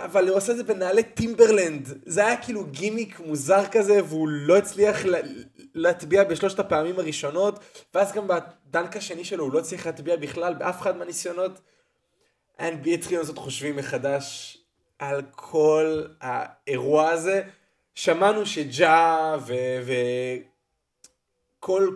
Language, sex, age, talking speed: Hebrew, male, 20-39, 125 wpm